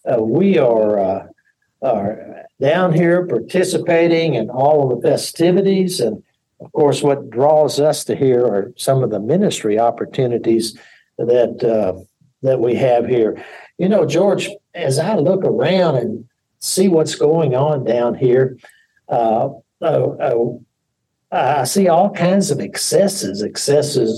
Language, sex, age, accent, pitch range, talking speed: English, male, 60-79, American, 115-160 Hz, 140 wpm